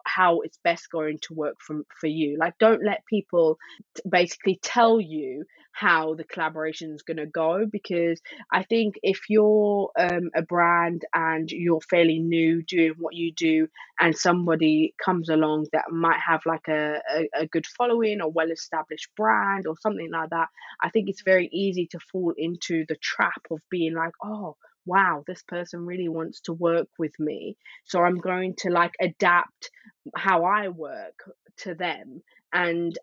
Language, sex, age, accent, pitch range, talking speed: English, female, 20-39, British, 160-185 Hz, 170 wpm